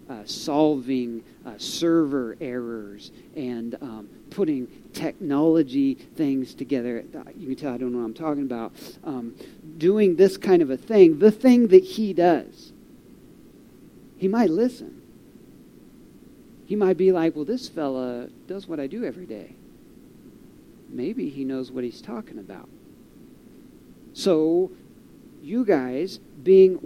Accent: American